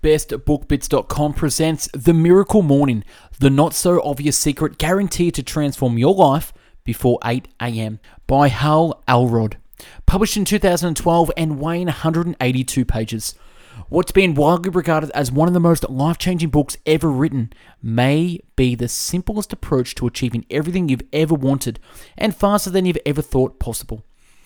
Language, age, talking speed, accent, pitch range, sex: English, 20-39, 135 wpm, Australian, 130-170 Hz, male